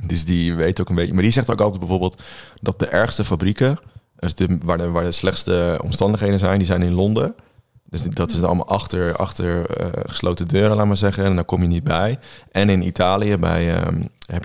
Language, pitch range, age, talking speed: Dutch, 85-95 Hz, 20-39, 225 wpm